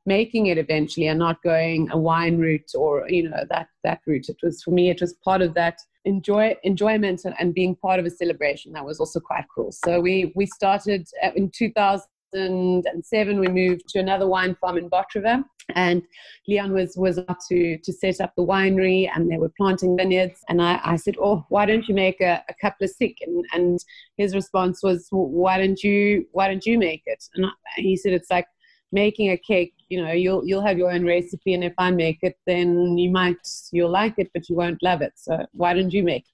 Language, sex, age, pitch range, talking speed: English, female, 30-49, 175-205 Hz, 220 wpm